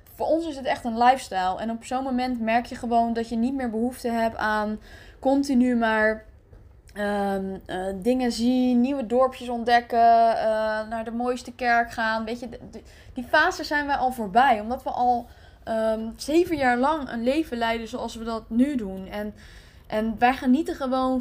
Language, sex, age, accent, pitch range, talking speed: Dutch, female, 10-29, Dutch, 225-260 Hz, 185 wpm